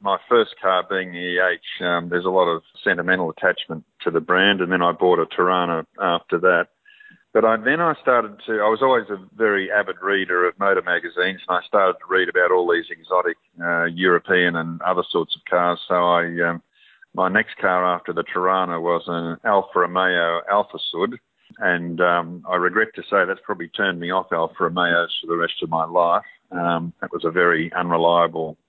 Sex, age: male, 50-69